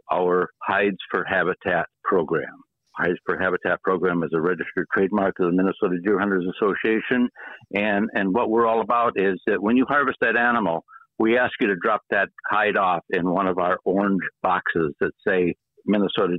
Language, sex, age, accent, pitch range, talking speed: English, male, 60-79, American, 90-115 Hz, 180 wpm